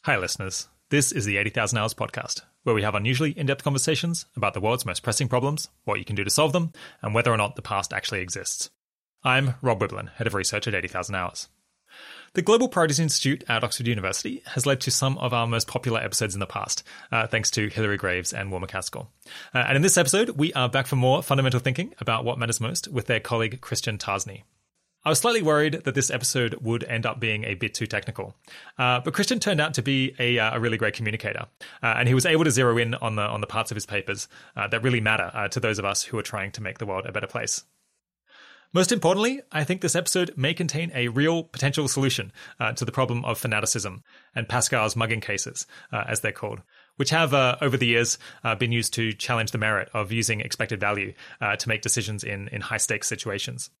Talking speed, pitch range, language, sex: 230 wpm, 110-140 Hz, English, male